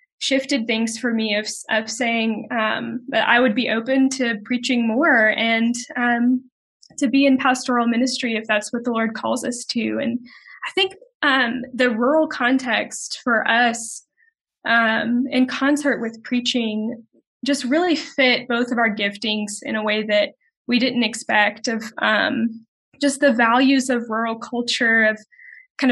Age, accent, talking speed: 10-29, American, 160 wpm